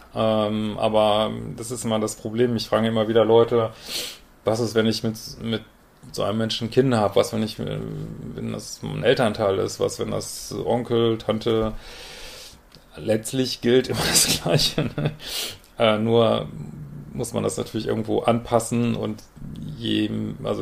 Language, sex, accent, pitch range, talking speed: German, male, German, 105-115 Hz, 155 wpm